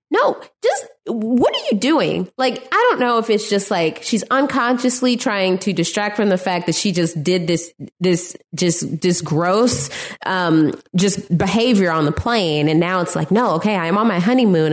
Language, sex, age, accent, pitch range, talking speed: English, female, 20-39, American, 180-260 Hz, 190 wpm